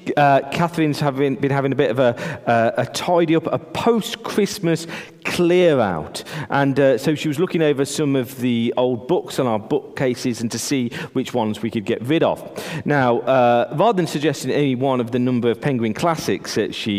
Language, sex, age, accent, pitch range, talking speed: English, male, 40-59, British, 120-165 Hz, 195 wpm